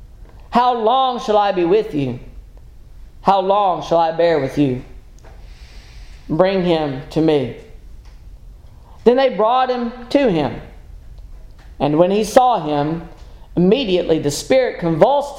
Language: English